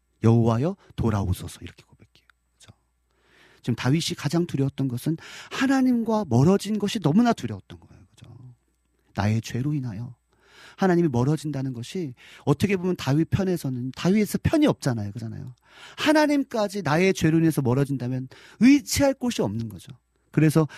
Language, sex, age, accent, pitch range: Korean, male, 40-59, native, 115-185 Hz